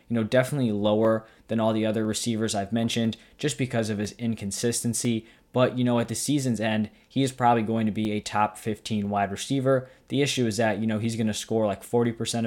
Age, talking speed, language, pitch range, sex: 20-39, 220 wpm, English, 110-120 Hz, male